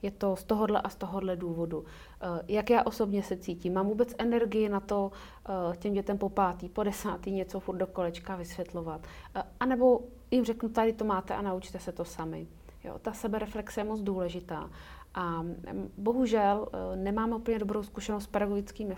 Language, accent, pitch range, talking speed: Czech, native, 185-220 Hz, 175 wpm